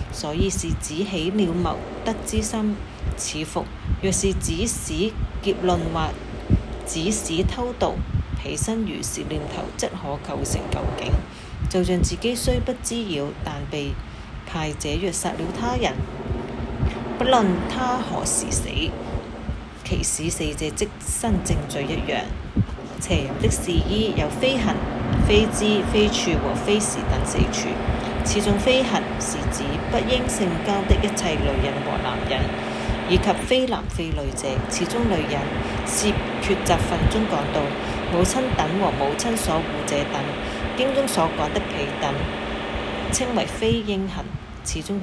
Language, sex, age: Chinese, female, 30-49